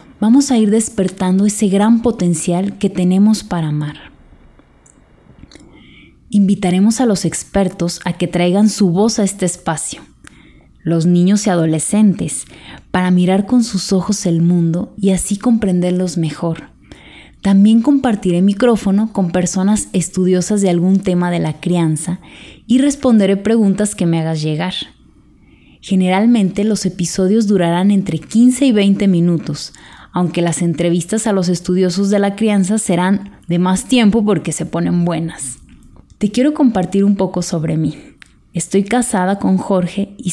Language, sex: Spanish, female